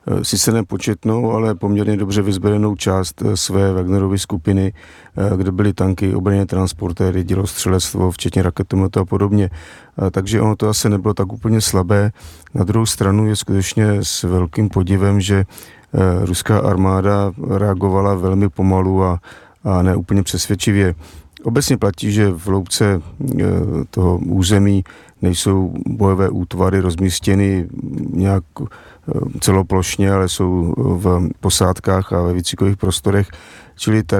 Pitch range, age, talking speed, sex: 90-100 Hz, 40-59, 125 wpm, male